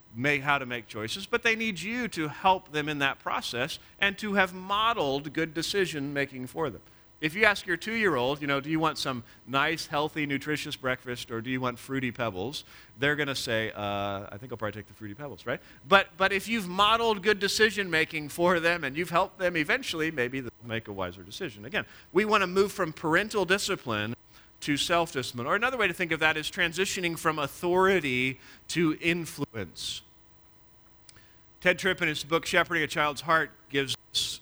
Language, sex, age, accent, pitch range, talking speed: English, male, 40-59, American, 120-175 Hz, 195 wpm